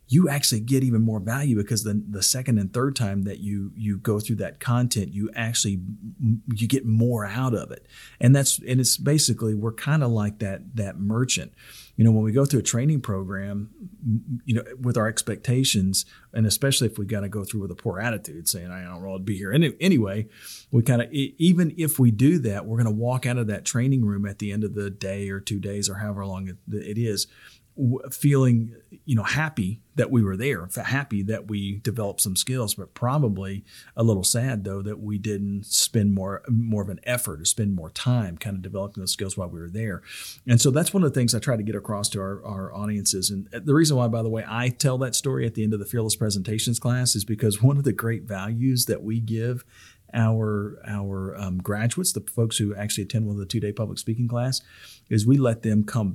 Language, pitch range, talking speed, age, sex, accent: English, 100-125 Hz, 230 wpm, 40-59, male, American